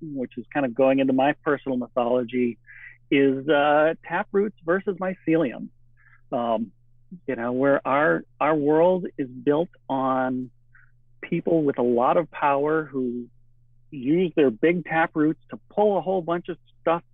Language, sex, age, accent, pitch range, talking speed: English, male, 40-59, American, 130-175 Hz, 145 wpm